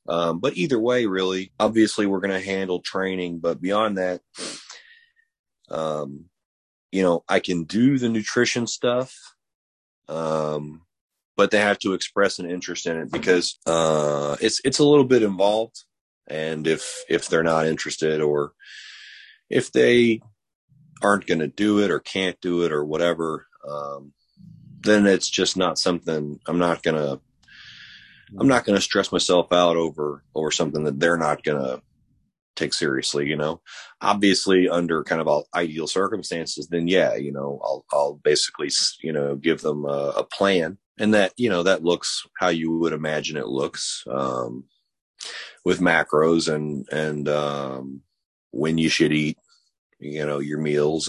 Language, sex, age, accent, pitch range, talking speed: English, male, 30-49, American, 75-95 Hz, 160 wpm